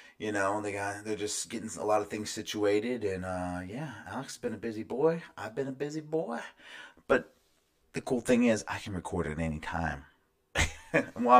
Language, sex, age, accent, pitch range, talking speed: English, male, 30-49, American, 80-125 Hz, 200 wpm